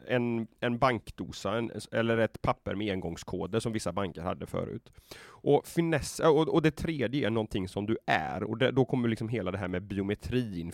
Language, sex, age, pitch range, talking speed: Swedish, male, 30-49, 100-125 Hz, 195 wpm